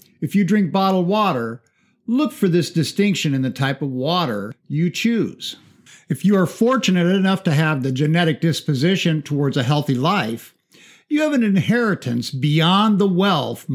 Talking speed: 160 wpm